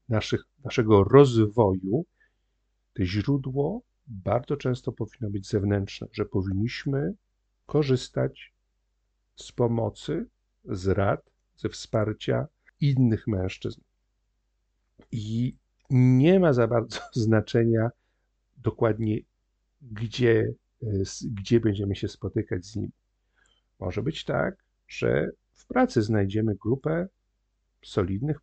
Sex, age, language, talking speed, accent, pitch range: male, 50-69, Polish, 90 wpm, native, 100-135 Hz